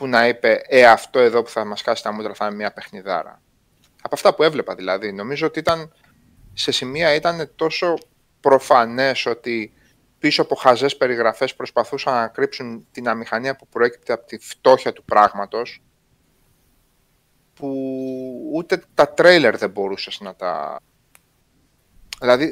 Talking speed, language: 145 wpm, Greek